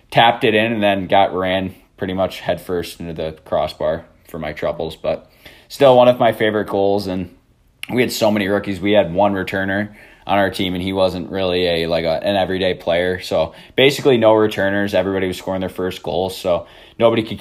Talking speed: 205 wpm